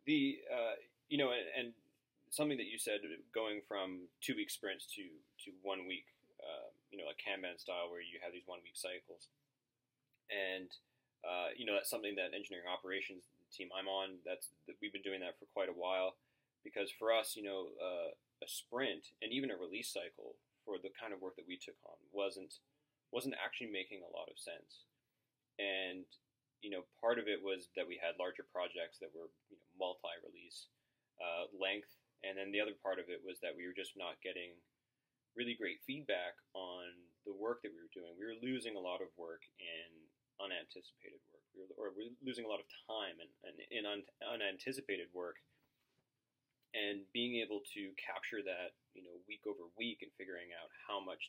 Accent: American